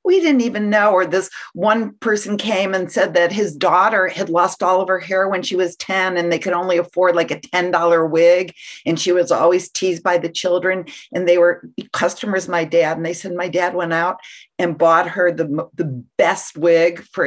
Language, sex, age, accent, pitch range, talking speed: English, female, 50-69, American, 170-205 Hz, 215 wpm